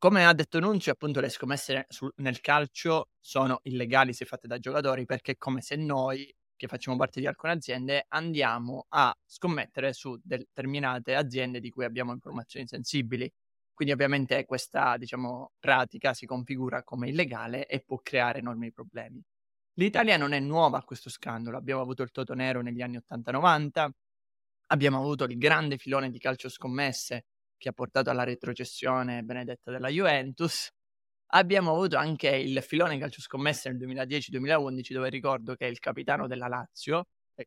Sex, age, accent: male, 20-39, native